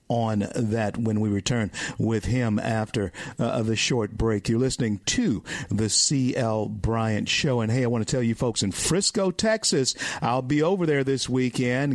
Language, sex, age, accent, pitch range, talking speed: English, male, 50-69, American, 110-130 Hz, 180 wpm